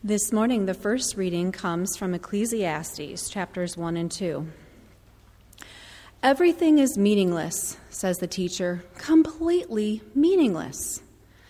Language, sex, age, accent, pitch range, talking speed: English, female, 40-59, American, 180-275 Hz, 105 wpm